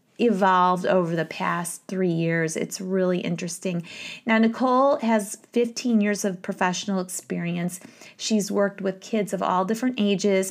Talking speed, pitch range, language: 145 wpm, 180-210 Hz, English